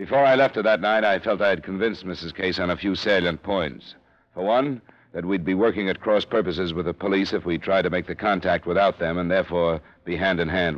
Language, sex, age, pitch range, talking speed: English, male, 60-79, 85-105 Hz, 235 wpm